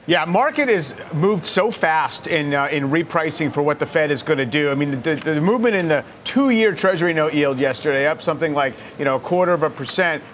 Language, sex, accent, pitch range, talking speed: English, male, American, 145-180 Hz, 240 wpm